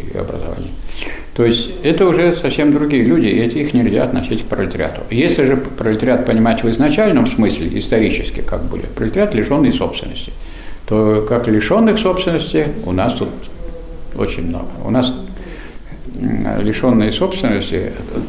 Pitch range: 100-140 Hz